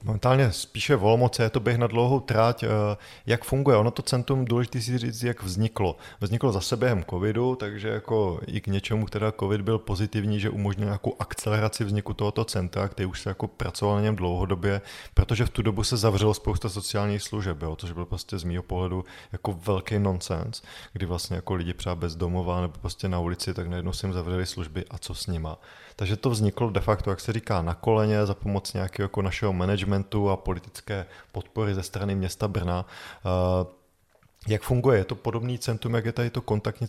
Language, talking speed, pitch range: Czech, 195 wpm, 95-110 Hz